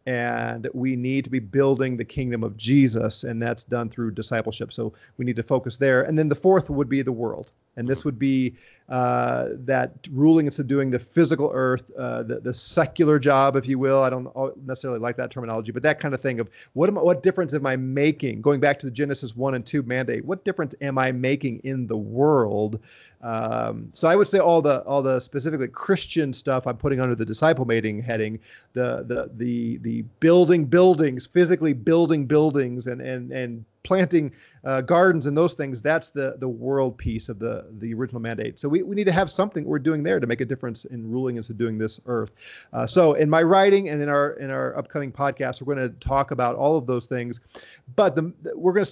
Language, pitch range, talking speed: English, 120-150 Hz, 220 wpm